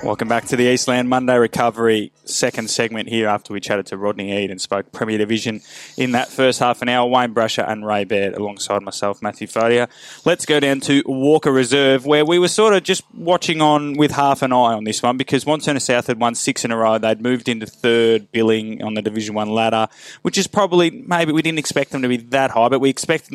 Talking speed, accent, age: 235 wpm, Australian, 20-39